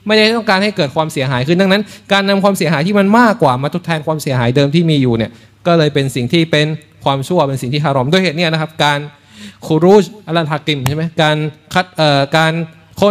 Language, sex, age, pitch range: Thai, male, 20-39, 135-190 Hz